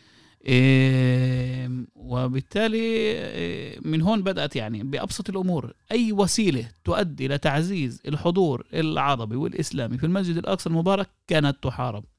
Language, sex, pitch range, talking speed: Arabic, male, 125-170 Hz, 110 wpm